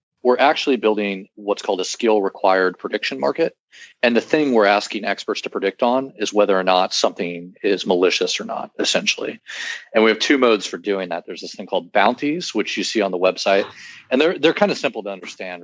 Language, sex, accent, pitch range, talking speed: English, male, American, 95-120 Hz, 215 wpm